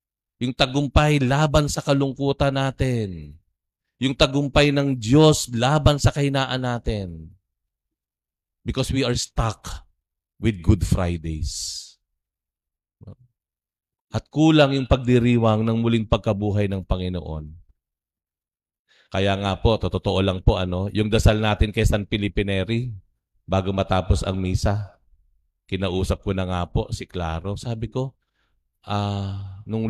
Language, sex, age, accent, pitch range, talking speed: Filipino, male, 50-69, native, 95-130 Hz, 120 wpm